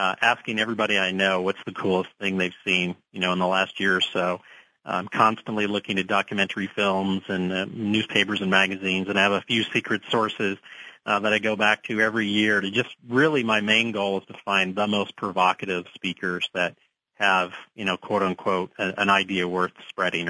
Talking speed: 205 wpm